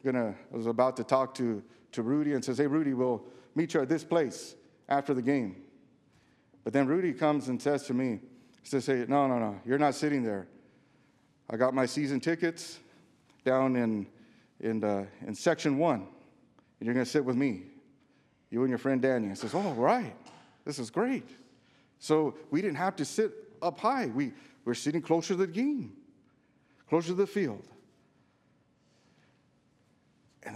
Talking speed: 175 wpm